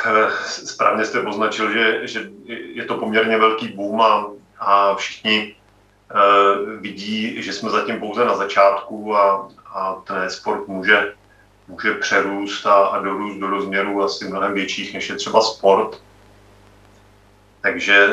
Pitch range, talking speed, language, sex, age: 100-105 Hz, 135 wpm, Czech, male, 40-59